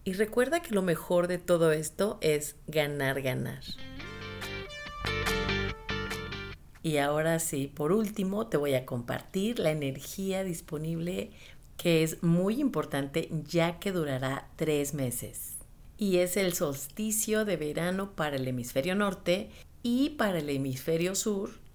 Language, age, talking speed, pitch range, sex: Spanish, 40-59, 130 wpm, 145-185 Hz, female